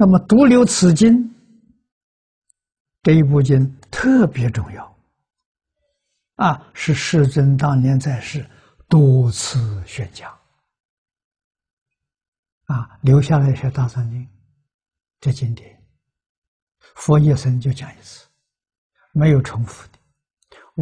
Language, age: Chinese, 60-79